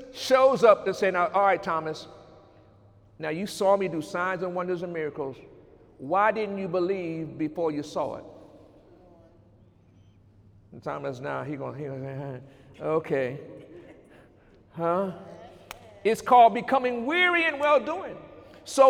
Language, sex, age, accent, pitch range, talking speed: English, male, 50-69, American, 175-255 Hz, 140 wpm